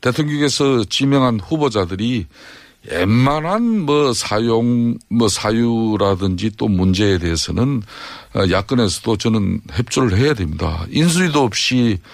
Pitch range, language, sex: 100-125 Hz, Korean, male